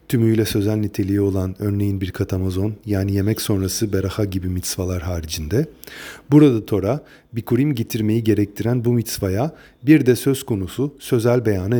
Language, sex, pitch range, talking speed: Turkish, male, 100-125 Hz, 140 wpm